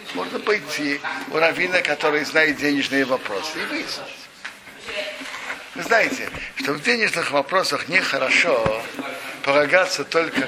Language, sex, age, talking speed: Russian, male, 60-79, 110 wpm